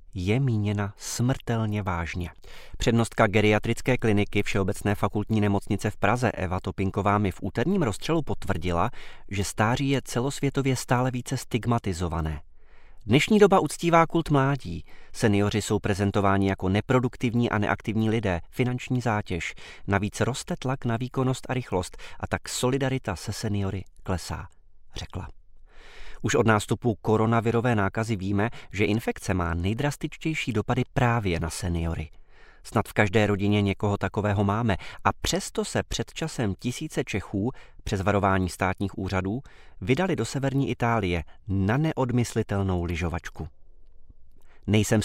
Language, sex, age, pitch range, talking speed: Czech, male, 30-49, 95-120 Hz, 125 wpm